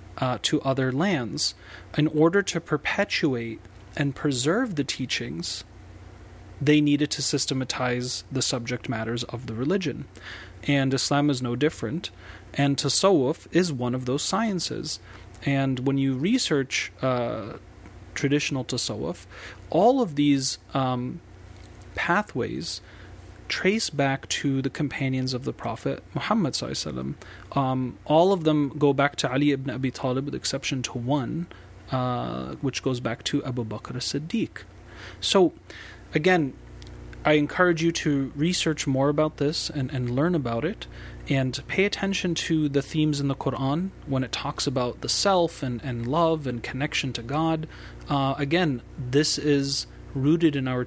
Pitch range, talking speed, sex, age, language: 120-150 Hz, 145 wpm, male, 30-49, English